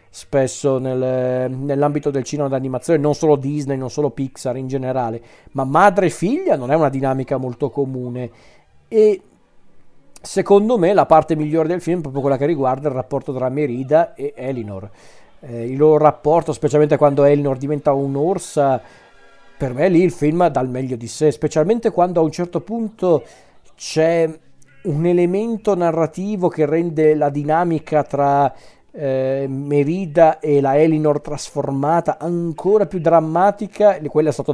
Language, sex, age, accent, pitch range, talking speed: Italian, male, 40-59, native, 135-180 Hz, 155 wpm